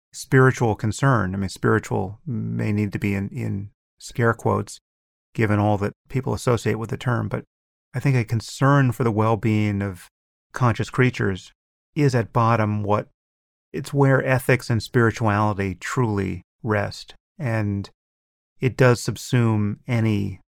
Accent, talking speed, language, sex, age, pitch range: American, 140 wpm, English, male, 30-49, 95-120 Hz